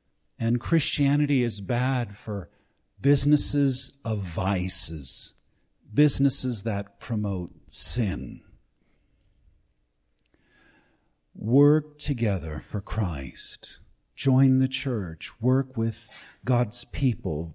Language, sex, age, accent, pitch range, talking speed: English, male, 50-69, American, 95-135 Hz, 80 wpm